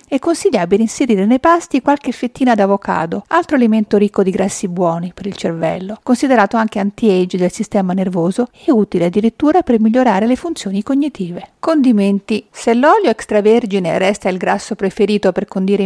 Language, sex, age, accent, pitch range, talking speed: Italian, female, 50-69, native, 190-250 Hz, 155 wpm